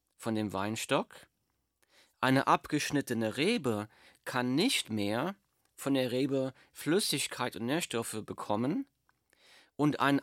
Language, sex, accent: German, male, German